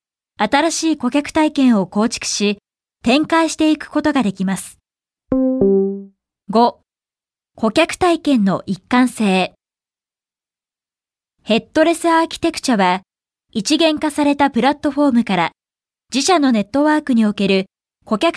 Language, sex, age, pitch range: Japanese, female, 20-39, 205-295 Hz